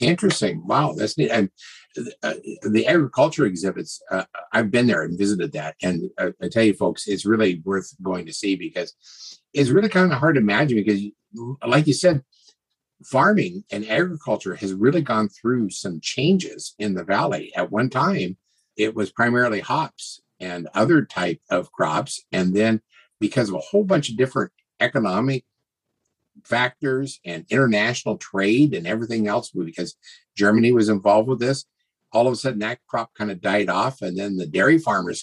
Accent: American